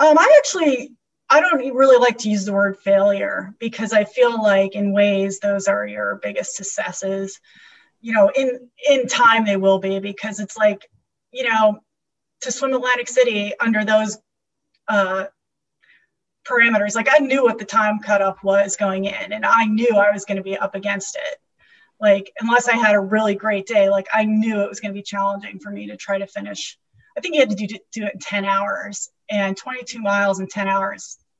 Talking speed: 200 wpm